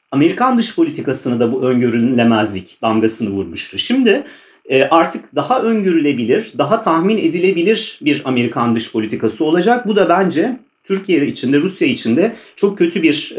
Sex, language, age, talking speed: male, Turkish, 40-59, 145 wpm